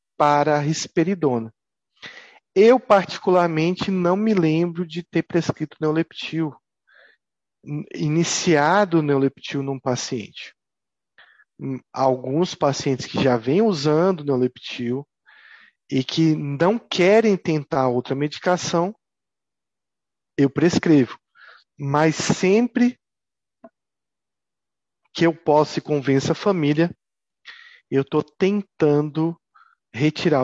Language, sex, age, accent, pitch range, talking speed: Italian, male, 40-59, Brazilian, 140-180 Hz, 90 wpm